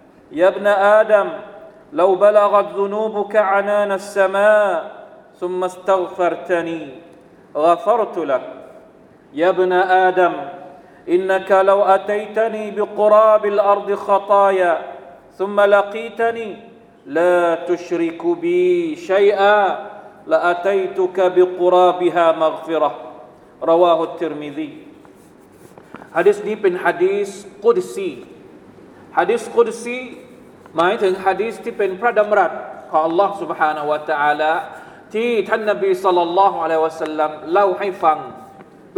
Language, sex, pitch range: Thai, male, 175-215 Hz